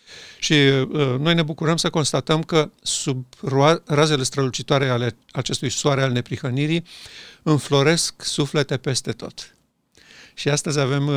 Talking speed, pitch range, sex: 120 wpm, 125-150 Hz, male